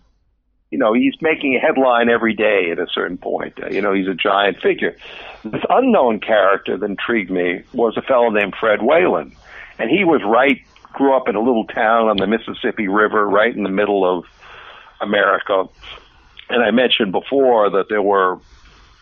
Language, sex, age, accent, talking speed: English, male, 60-79, American, 185 wpm